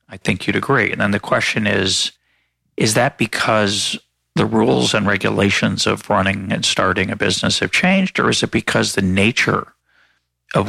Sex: male